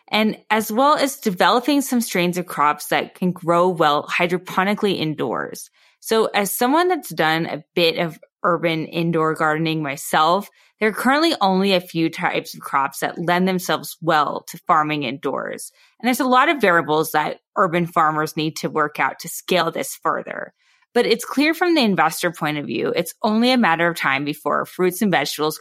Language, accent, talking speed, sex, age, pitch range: English, American, 185 wpm, female, 20-39, 155-210 Hz